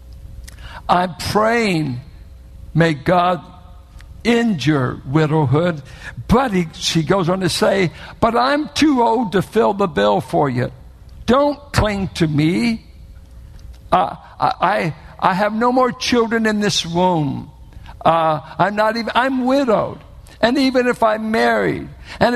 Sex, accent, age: male, American, 60-79